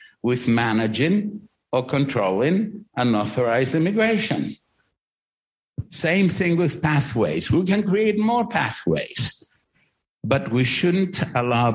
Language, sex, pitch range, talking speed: English, male, 105-155 Hz, 95 wpm